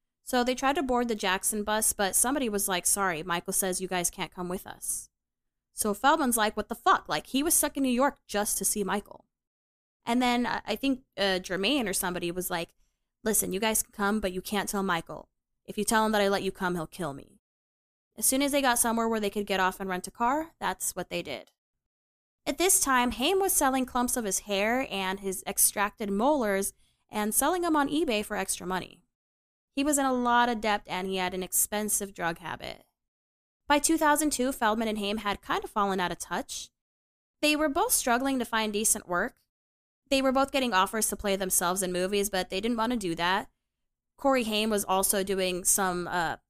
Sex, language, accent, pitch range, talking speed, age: female, English, American, 185-245 Hz, 220 wpm, 20-39